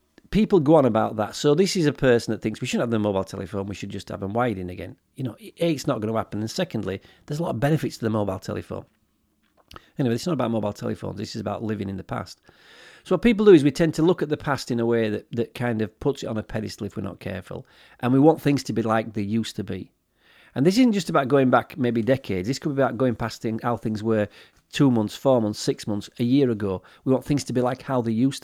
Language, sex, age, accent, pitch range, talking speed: English, male, 40-59, British, 110-140 Hz, 280 wpm